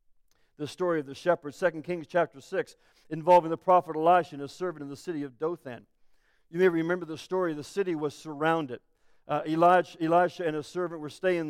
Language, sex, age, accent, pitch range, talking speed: English, male, 50-69, American, 165-205 Hz, 200 wpm